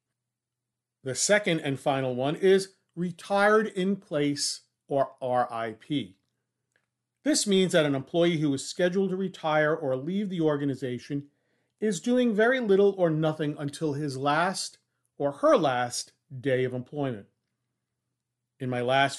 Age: 40-59